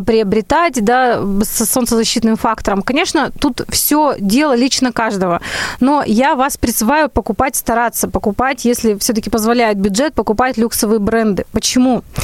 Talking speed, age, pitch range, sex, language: 125 wpm, 20-39, 220-265 Hz, female, Russian